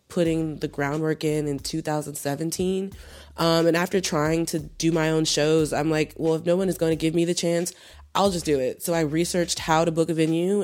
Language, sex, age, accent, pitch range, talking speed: Danish, female, 20-39, American, 150-185 Hz, 225 wpm